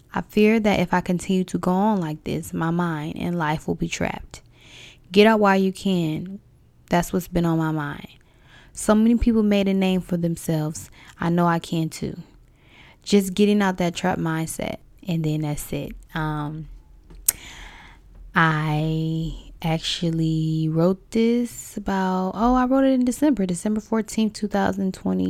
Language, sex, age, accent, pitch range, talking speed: English, female, 10-29, American, 160-190 Hz, 160 wpm